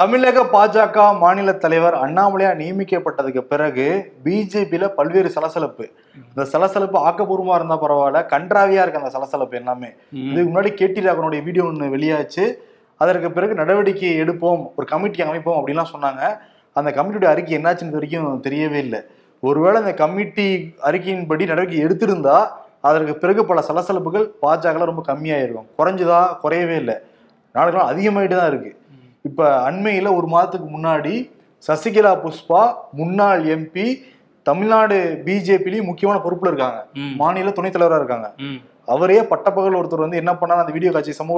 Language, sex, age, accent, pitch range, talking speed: Tamil, male, 30-49, native, 155-195 Hz, 130 wpm